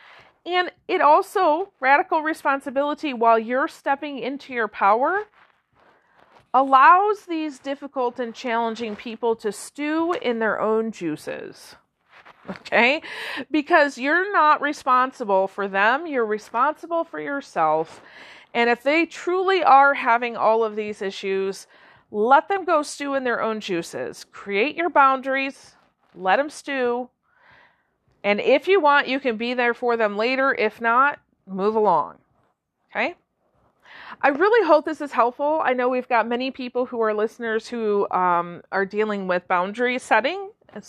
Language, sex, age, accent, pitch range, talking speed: English, female, 40-59, American, 225-305 Hz, 140 wpm